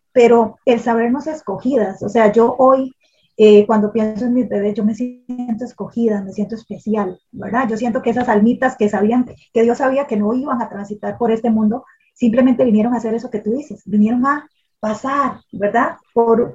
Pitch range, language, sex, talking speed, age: 210-245 Hz, Spanish, female, 190 wpm, 30-49